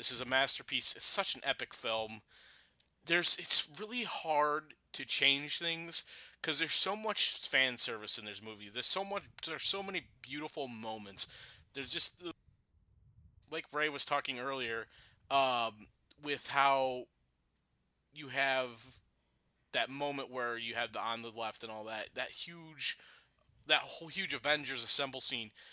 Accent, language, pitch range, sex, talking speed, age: American, English, 120-170 Hz, male, 150 wpm, 20-39